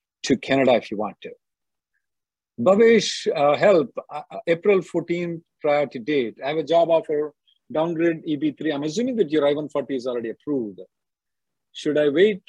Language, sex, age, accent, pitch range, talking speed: English, male, 50-69, Indian, 145-185 Hz, 165 wpm